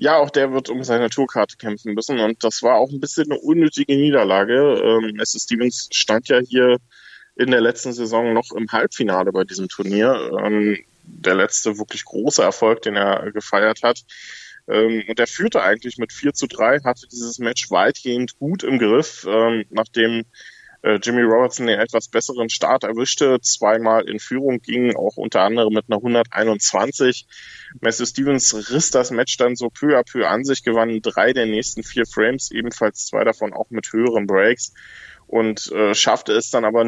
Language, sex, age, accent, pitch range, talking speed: German, male, 20-39, German, 105-125 Hz, 170 wpm